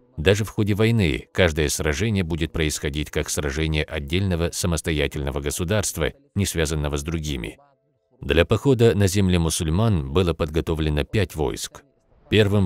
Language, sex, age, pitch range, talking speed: Russian, male, 50-69, 75-95 Hz, 130 wpm